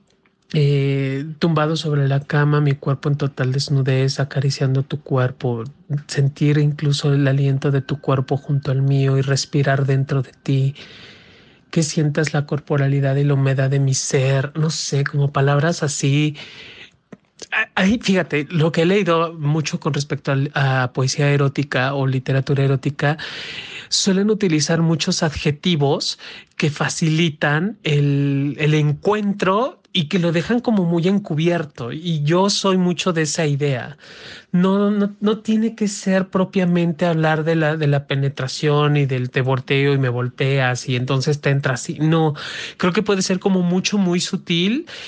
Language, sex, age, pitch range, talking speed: Spanish, male, 40-59, 140-175 Hz, 150 wpm